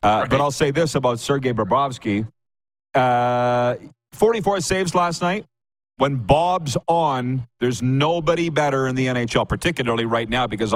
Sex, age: male, 40-59